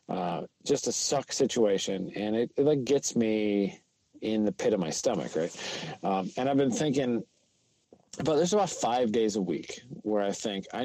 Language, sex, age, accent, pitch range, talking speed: English, male, 40-59, American, 100-120 Hz, 190 wpm